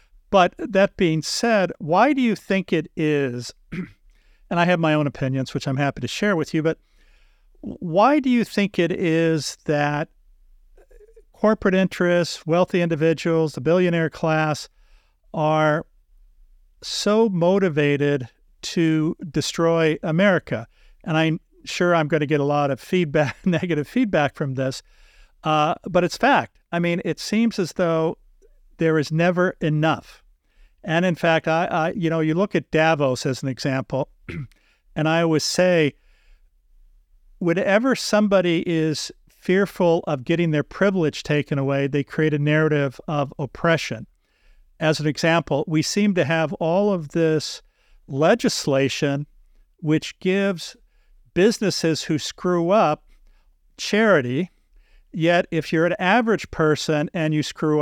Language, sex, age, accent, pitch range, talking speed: English, male, 50-69, American, 150-180 Hz, 140 wpm